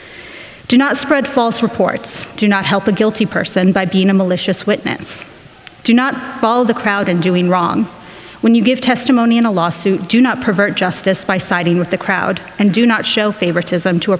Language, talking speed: English, 200 wpm